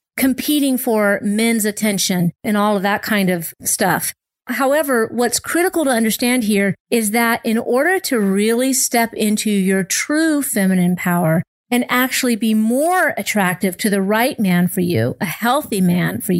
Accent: American